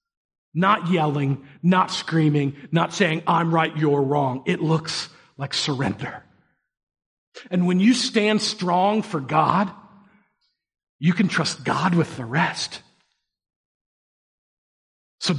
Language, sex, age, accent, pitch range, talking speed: English, male, 40-59, American, 150-215 Hz, 115 wpm